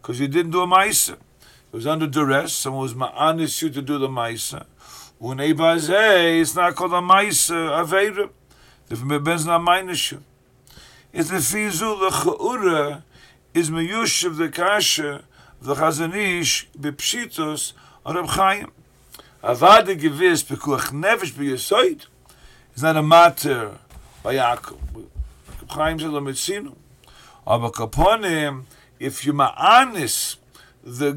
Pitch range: 140-180 Hz